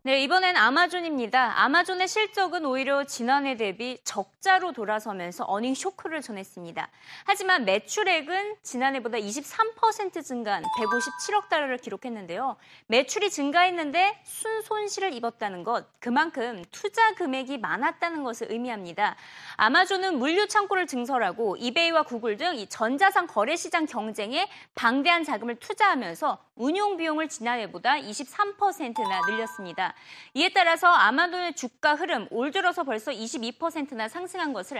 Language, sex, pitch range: Korean, female, 230-365 Hz